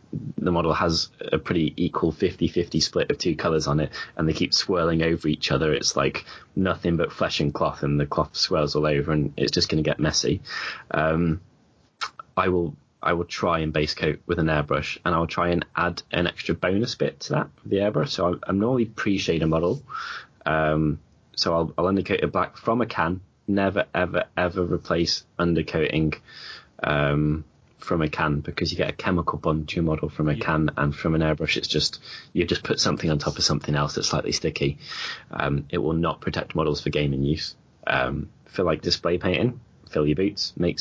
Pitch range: 75-95 Hz